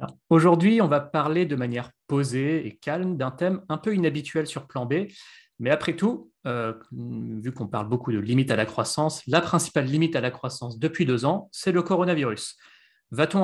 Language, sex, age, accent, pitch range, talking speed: French, male, 30-49, French, 120-160 Hz, 190 wpm